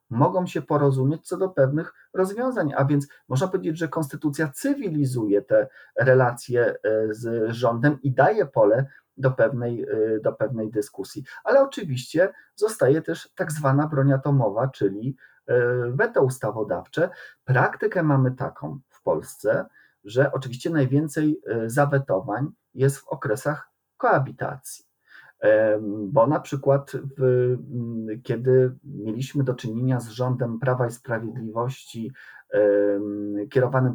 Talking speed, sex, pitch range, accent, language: 110 wpm, male, 120-145 Hz, native, Polish